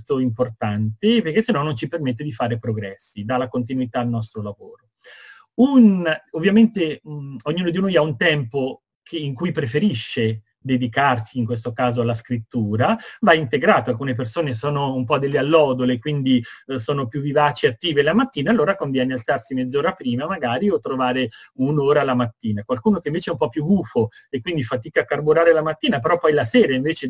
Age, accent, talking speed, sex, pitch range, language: 30-49, native, 175 wpm, male, 125-170 Hz, Italian